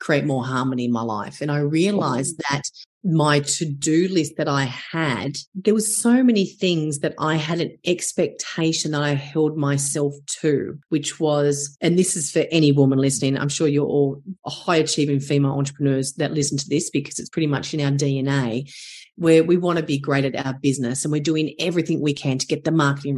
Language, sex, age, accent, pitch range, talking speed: English, female, 30-49, Australian, 140-175 Hz, 205 wpm